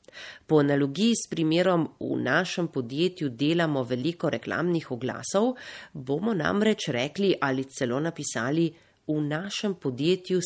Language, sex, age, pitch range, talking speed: Italian, female, 40-59, 135-175 Hz, 115 wpm